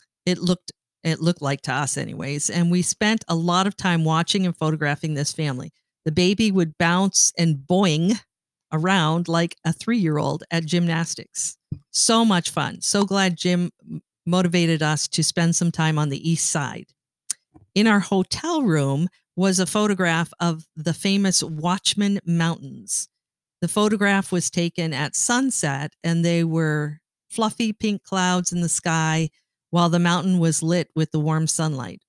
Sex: female